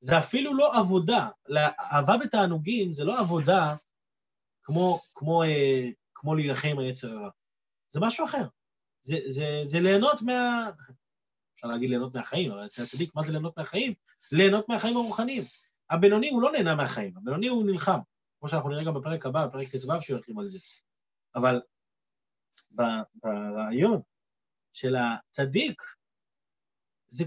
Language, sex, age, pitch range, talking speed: Hebrew, male, 30-49, 150-210 Hz, 140 wpm